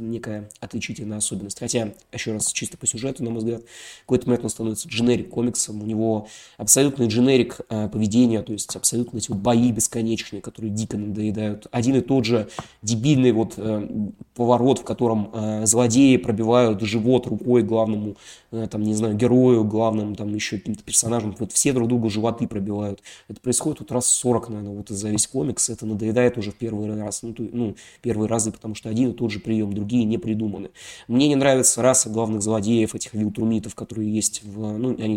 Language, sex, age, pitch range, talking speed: Russian, male, 20-39, 105-120 Hz, 190 wpm